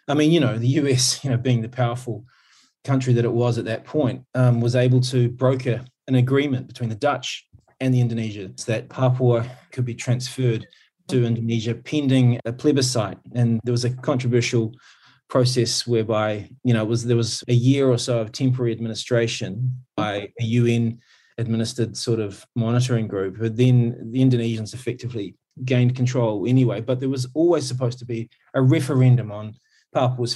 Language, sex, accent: English, male, Australian